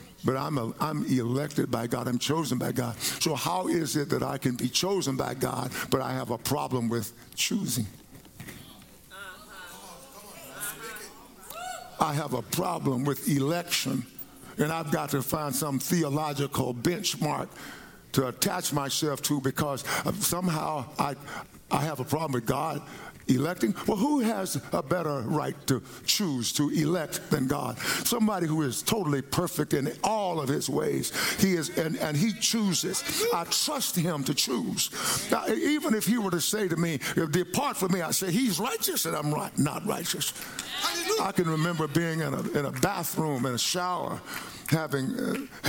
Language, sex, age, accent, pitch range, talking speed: English, male, 60-79, American, 140-185 Hz, 160 wpm